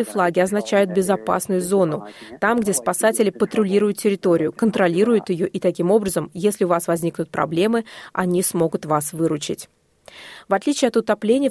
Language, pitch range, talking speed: Russian, 180-225 Hz, 140 wpm